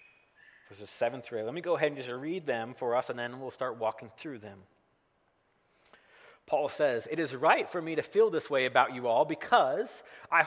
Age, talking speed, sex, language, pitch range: 30-49, 190 wpm, male, English, 130-190 Hz